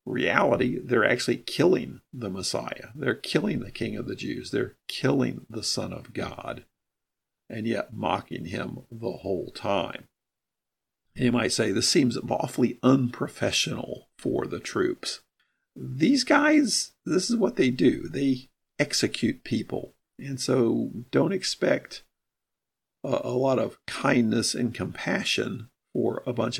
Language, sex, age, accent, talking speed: English, male, 50-69, American, 135 wpm